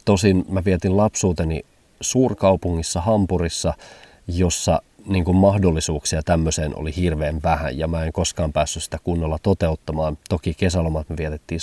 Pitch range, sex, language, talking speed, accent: 80-95 Hz, male, Finnish, 130 wpm, native